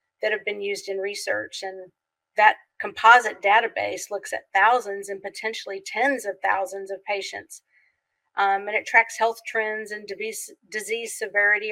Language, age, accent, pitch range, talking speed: English, 40-59, American, 195-225 Hz, 155 wpm